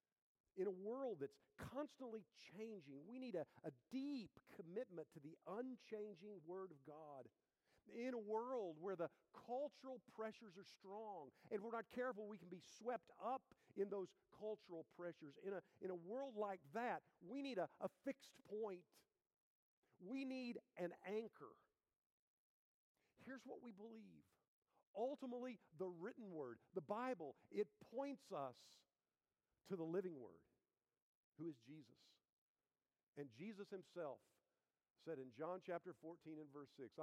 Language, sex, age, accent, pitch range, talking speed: English, male, 50-69, American, 150-220 Hz, 140 wpm